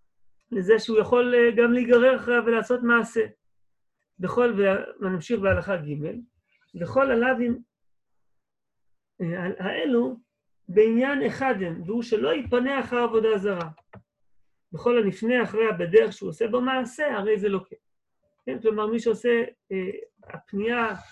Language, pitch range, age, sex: Hebrew, 190-240 Hz, 40-59, male